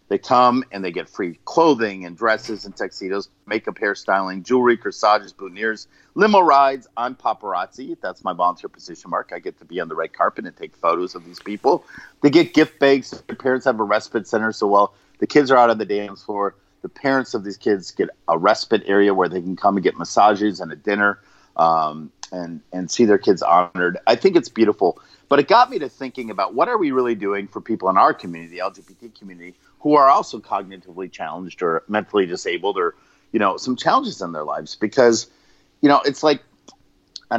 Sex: male